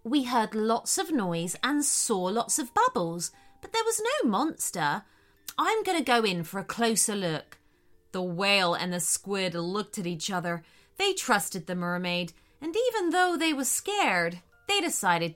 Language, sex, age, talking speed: English, female, 30-49, 175 wpm